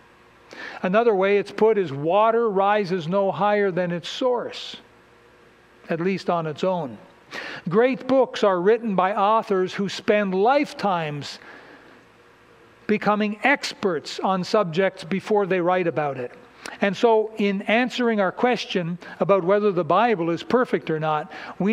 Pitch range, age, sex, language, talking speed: 180-220 Hz, 60-79, male, English, 140 wpm